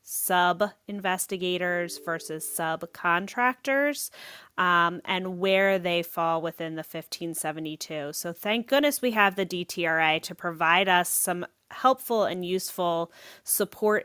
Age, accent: 30-49, American